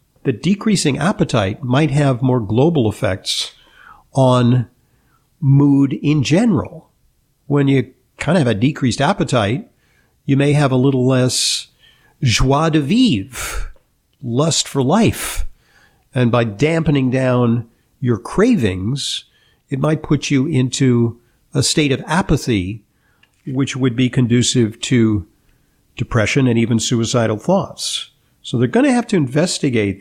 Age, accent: 50-69, American